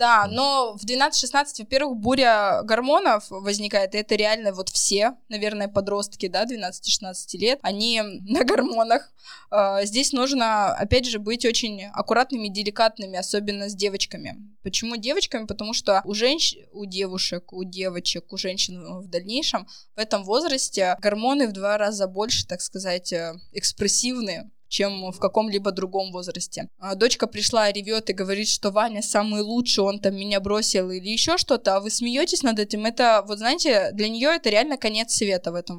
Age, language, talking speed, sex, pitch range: 20-39, Russian, 160 wpm, female, 200-235 Hz